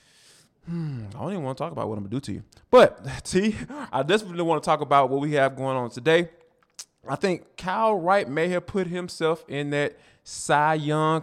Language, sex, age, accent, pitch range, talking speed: English, male, 20-39, American, 130-175 Hz, 220 wpm